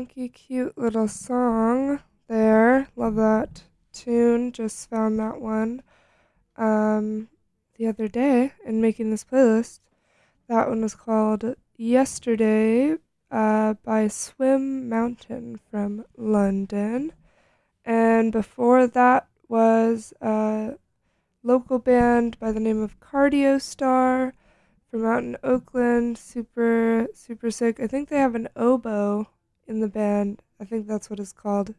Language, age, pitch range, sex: English, 20-39, 215-245 Hz, female